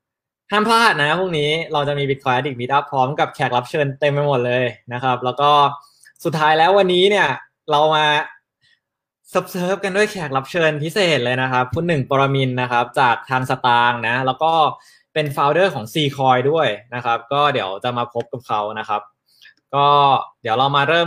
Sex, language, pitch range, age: male, Thai, 130-160 Hz, 20-39